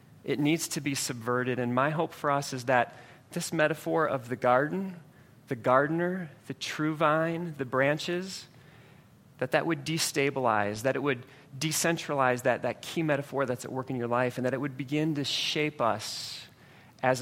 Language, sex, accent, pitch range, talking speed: English, male, American, 135-190 Hz, 180 wpm